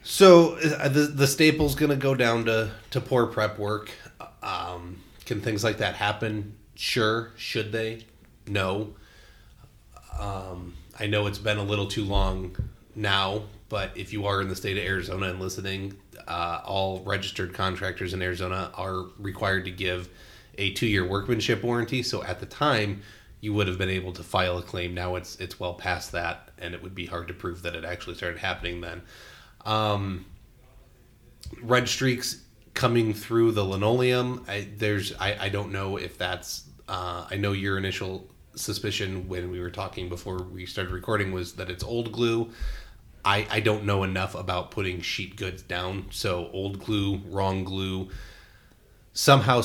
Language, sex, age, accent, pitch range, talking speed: English, male, 30-49, American, 90-110 Hz, 170 wpm